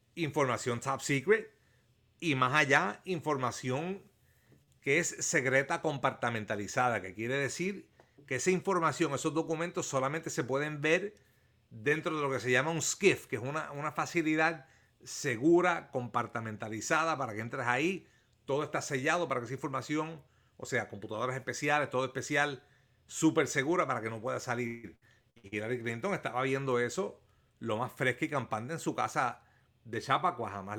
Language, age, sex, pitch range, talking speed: Spanish, 40-59, male, 120-155 Hz, 155 wpm